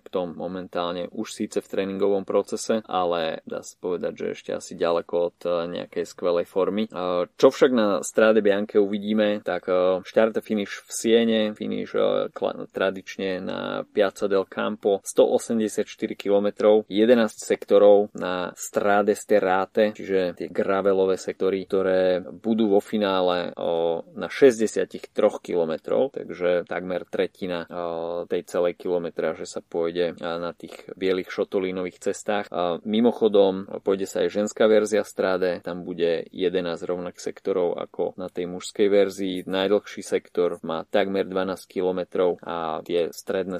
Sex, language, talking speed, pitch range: male, Slovak, 135 wpm, 85-105 Hz